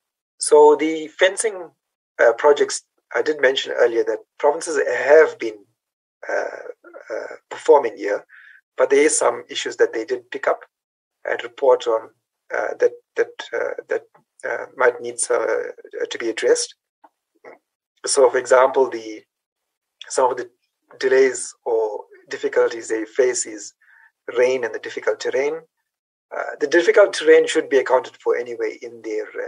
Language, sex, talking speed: English, male, 150 wpm